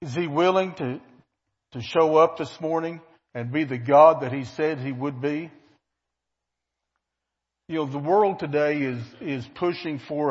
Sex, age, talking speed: male, 60-79, 165 wpm